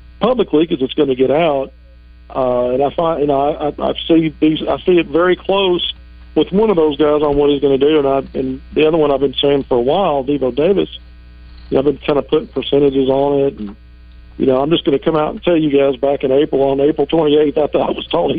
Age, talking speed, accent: 50-69, 270 wpm, American